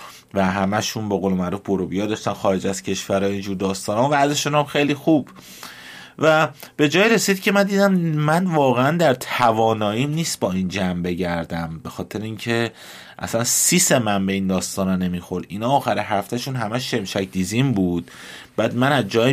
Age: 30-49